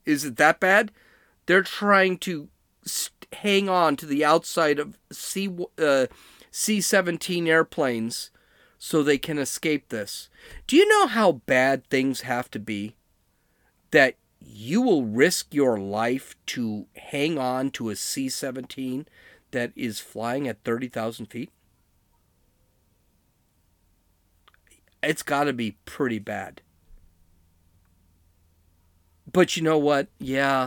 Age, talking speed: 40-59, 115 wpm